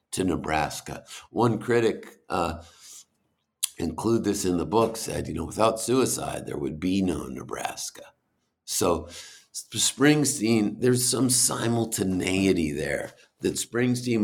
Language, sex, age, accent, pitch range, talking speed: English, male, 50-69, American, 90-115 Hz, 120 wpm